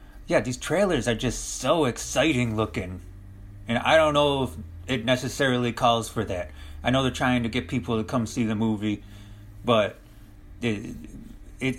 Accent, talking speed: American, 165 wpm